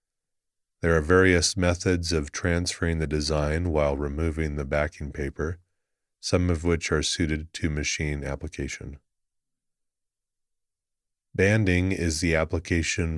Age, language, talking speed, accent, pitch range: 30-49, English, 115 wpm, American, 75-90 Hz